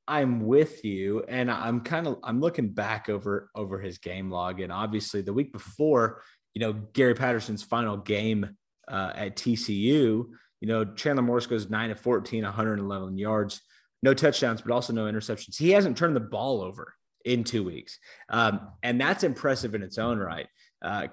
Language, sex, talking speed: English, male, 180 wpm